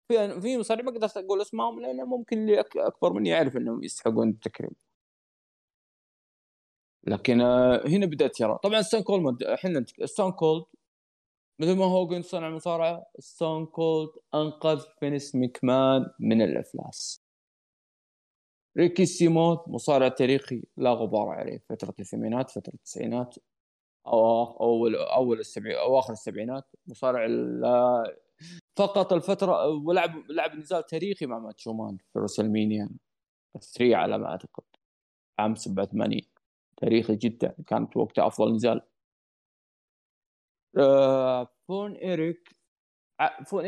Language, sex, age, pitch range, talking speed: Arabic, male, 20-39, 115-170 Hz, 115 wpm